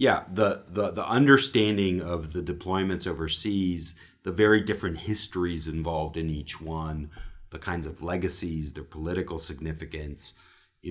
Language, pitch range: English, 80-95 Hz